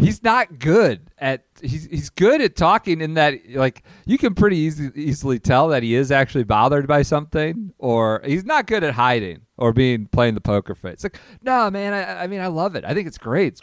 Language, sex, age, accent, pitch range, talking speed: English, male, 40-59, American, 110-150 Hz, 225 wpm